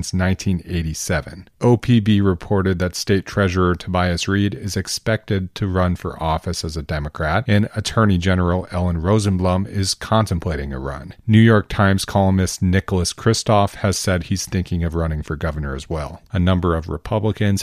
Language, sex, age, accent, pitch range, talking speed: English, male, 40-59, American, 90-105 Hz, 155 wpm